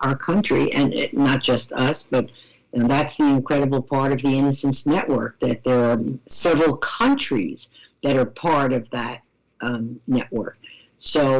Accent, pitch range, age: American, 130-165 Hz, 50-69